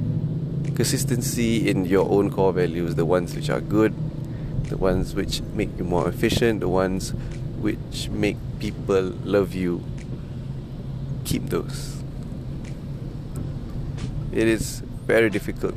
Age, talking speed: 20-39, 120 wpm